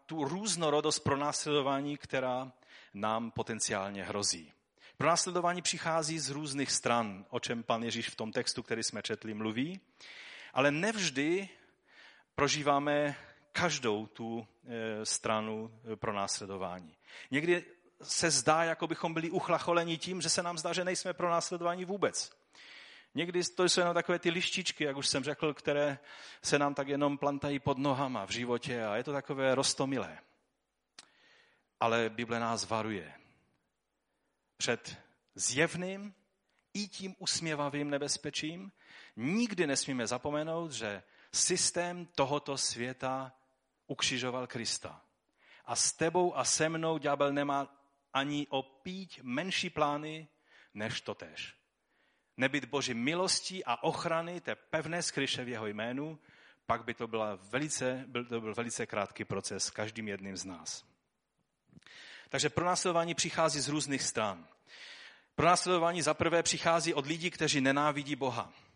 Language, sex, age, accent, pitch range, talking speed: Czech, male, 30-49, native, 120-170 Hz, 125 wpm